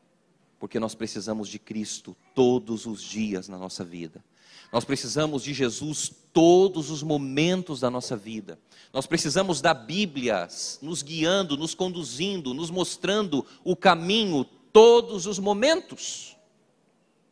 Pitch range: 130-185 Hz